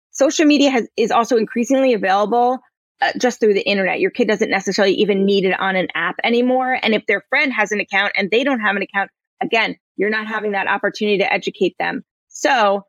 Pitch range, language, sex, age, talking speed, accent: 210-275 Hz, English, female, 20-39, 215 wpm, American